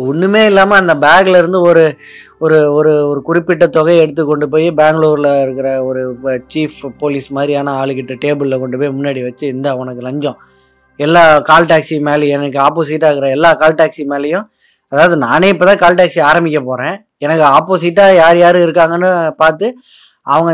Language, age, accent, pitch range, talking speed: Tamil, 20-39, native, 145-175 Hz, 185 wpm